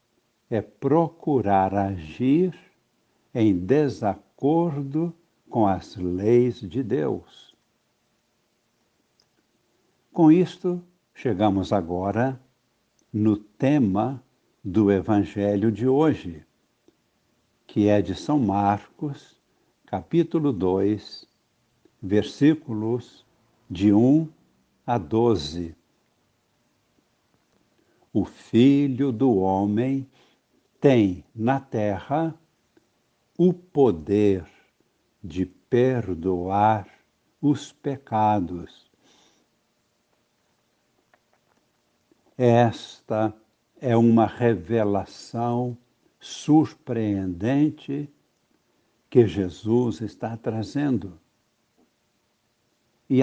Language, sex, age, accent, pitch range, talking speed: Portuguese, male, 60-79, Brazilian, 100-135 Hz, 60 wpm